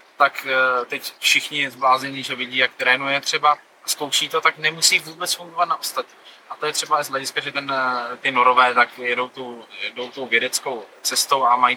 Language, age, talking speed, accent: Czech, 20-39, 190 wpm, native